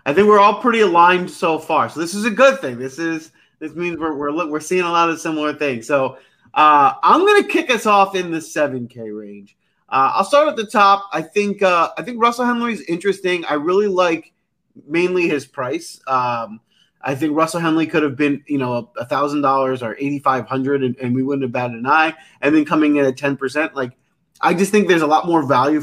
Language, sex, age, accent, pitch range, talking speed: English, male, 30-49, American, 135-195 Hz, 225 wpm